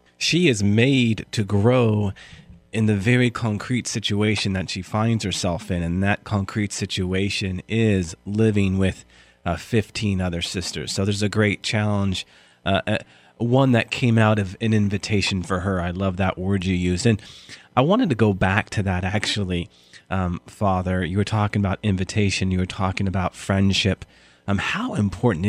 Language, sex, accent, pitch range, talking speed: English, male, American, 95-130 Hz, 170 wpm